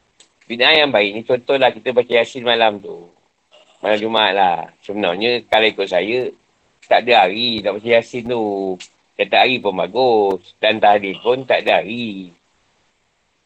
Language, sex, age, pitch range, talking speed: Malay, male, 50-69, 105-175 Hz, 170 wpm